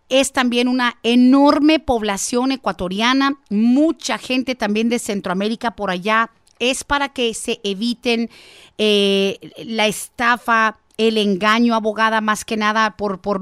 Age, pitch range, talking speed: 40-59, 220-275 Hz, 130 wpm